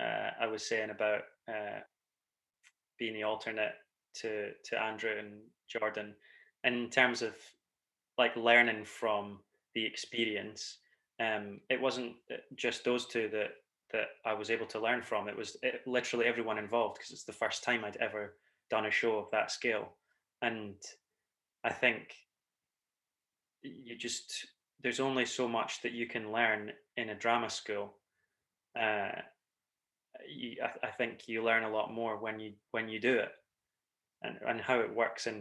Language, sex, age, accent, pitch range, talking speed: English, male, 20-39, British, 105-120 Hz, 160 wpm